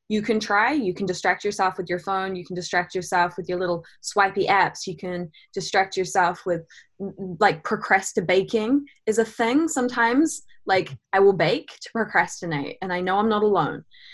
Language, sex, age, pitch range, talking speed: English, female, 20-39, 180-215 Hz, 180 wpm